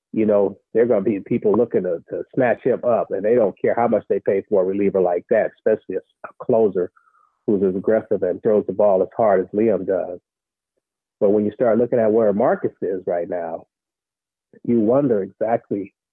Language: English